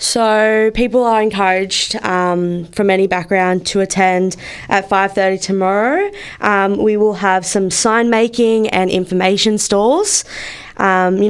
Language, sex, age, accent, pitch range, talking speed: English, female, 20-39, Australian, 185-220 Hz, 130 wpm